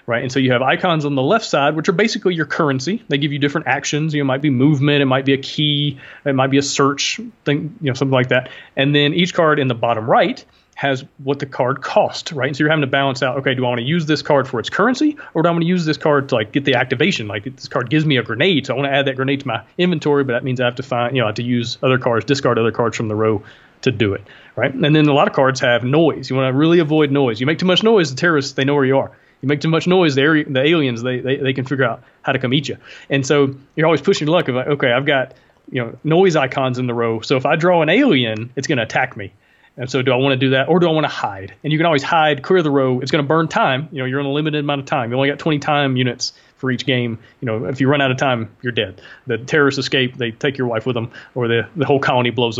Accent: American